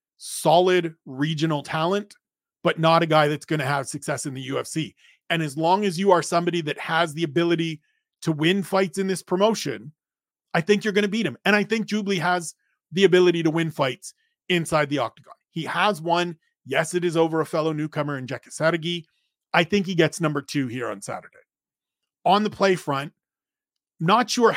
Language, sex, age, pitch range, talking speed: English, male, 30-49, 155-190 Hz, 195 wpm